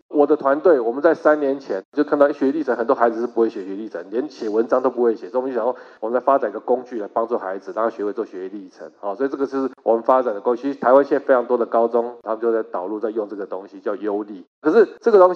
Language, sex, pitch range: Chinese, male, 125-175 Hz